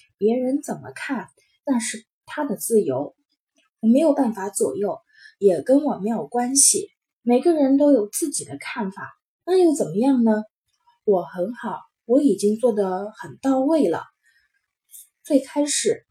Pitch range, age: 200-280 Hz, 20-39